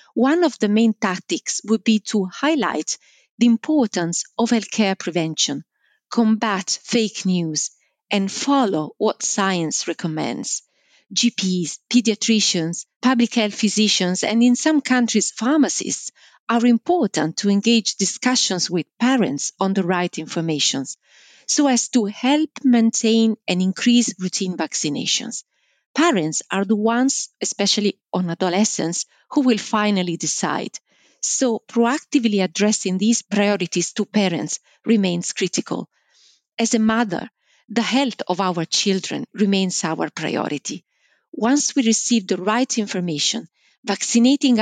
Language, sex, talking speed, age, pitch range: English, female, 120 wpm, 40-59, 185-235 Hz